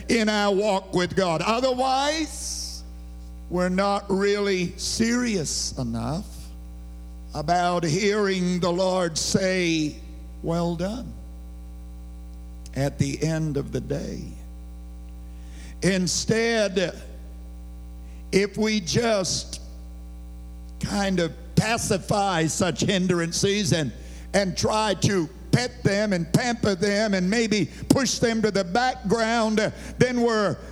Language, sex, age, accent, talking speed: English, male, 60-79, American, 100 wpm